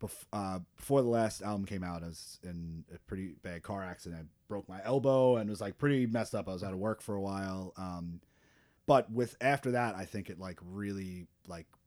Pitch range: 85-100 Hz